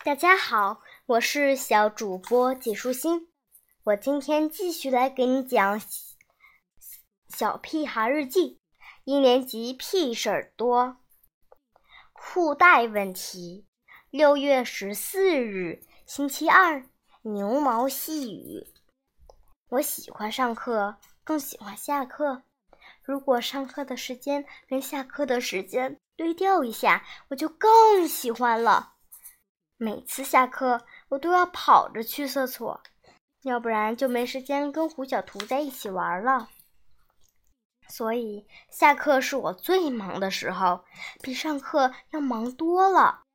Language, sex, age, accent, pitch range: Chinese, male, 10-29, native, 225-290 Hz